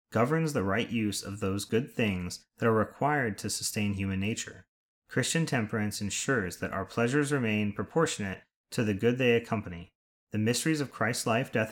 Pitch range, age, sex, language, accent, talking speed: 95-125 Hz, 30-49, male, English, American, 175 wpm